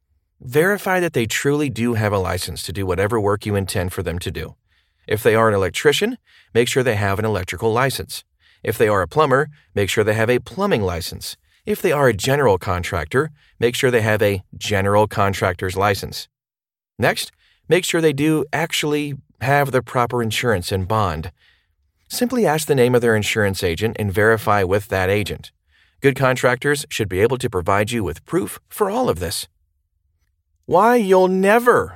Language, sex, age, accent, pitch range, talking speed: English, male, 40-59, American, 95-130 Hz, 185 wpm